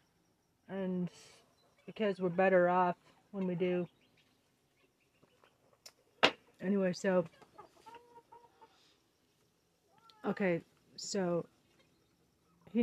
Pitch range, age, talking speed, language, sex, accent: 185-230 Hz, 30-49, 60 wpm, English, female, American